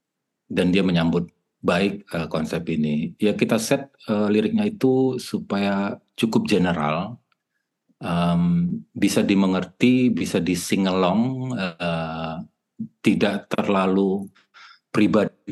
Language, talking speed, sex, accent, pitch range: Indonesian, 100 wpm, male, native, 85-110 Hz